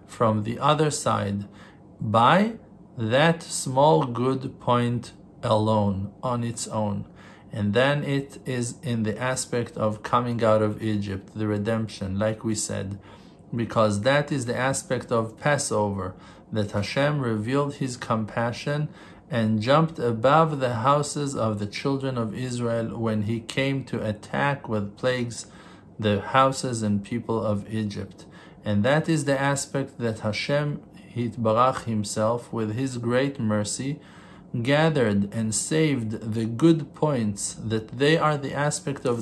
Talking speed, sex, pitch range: 140 wpm, male, 110-140 Hz